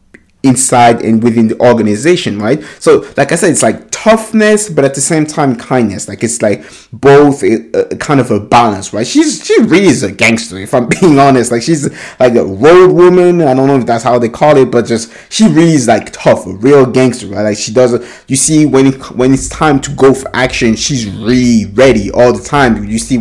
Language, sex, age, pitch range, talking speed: English, male, 20-39, 110-140 Hz, 225 wpm